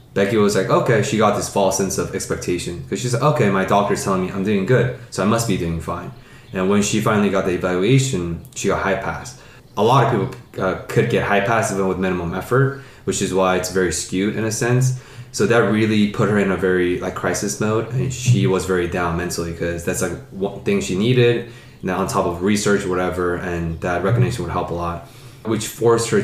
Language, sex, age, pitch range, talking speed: English, male, 20-39, 95-120 Hz, 235 wpm